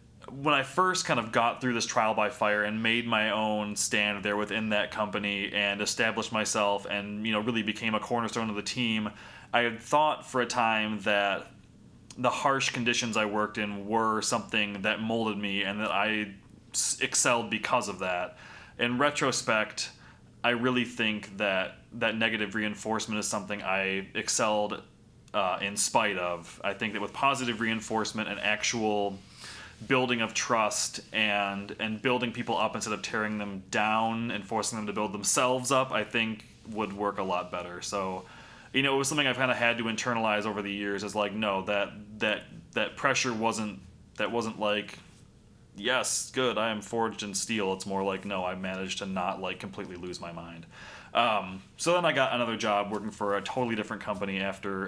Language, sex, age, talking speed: English, male, 20-39, 185 wpm